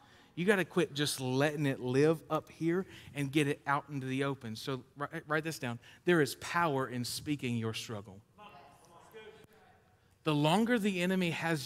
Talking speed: 170 wpm